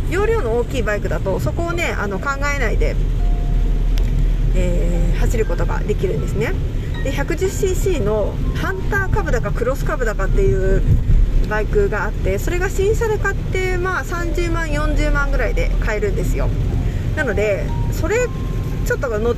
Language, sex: Japanese, female